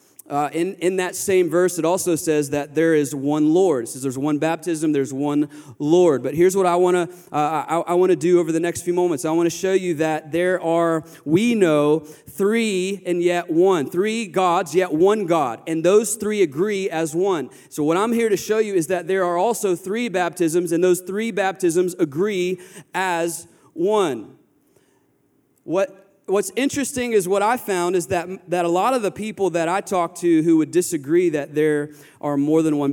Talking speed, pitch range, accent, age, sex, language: 200 wpm, 165-210 Hz, American, 30-49, male, English